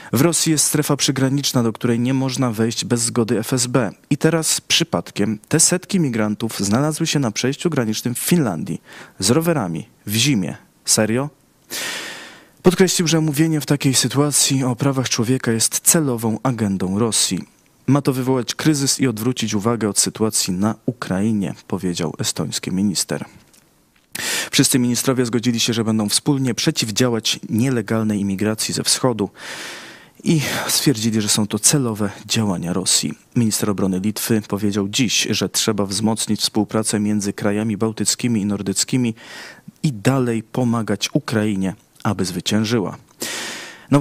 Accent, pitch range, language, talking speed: native, 105-135 Hz, Polish, 135 wpm